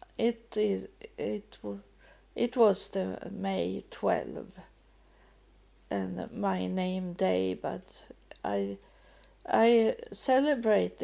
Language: English